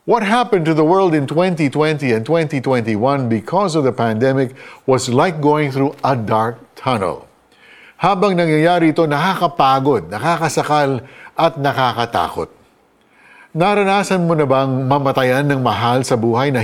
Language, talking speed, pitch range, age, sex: Filipino, 135 wpm, 125-160 Hz, 50-69, male